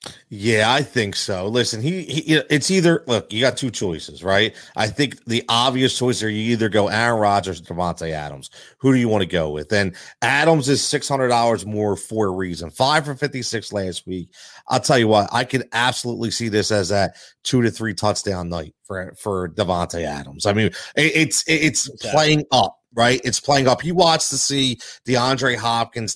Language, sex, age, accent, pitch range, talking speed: English, male, 30-49, American, 100-140 Hz, 195 wpm